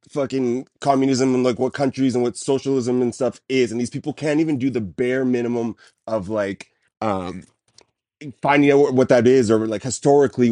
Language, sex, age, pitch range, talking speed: English, male, 30-49, 110-135 Hz, 185 wpm